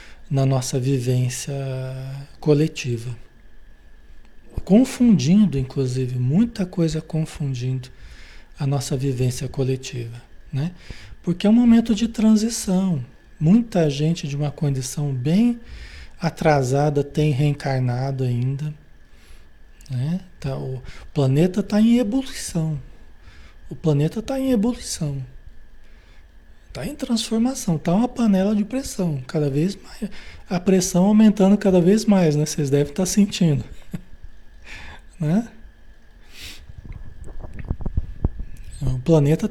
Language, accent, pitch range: Portuguese, Brazilian, 130-190 Hz